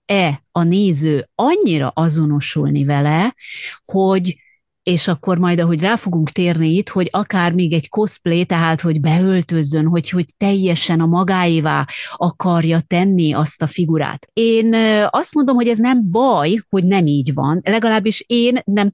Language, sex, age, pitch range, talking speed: Hungarian, female, 30-49, 165-195 Hz, 150 wpm